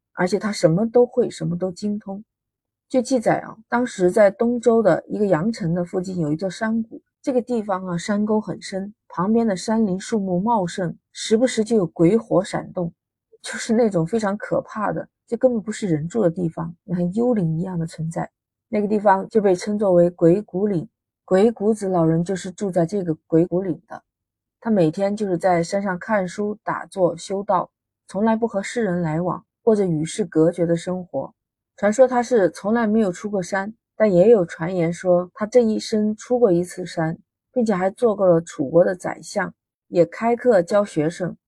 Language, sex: Chinese, female